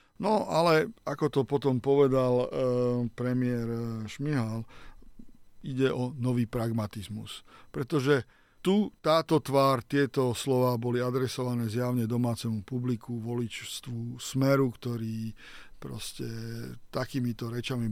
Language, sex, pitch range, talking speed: Slovak, male, 115-135 Hz, 105 wpm